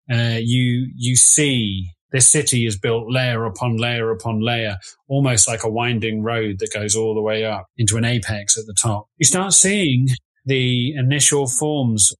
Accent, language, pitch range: British, English, 110-135 Hz